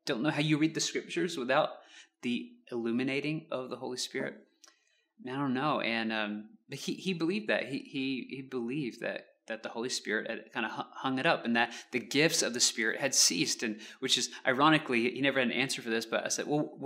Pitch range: 115-165 Hz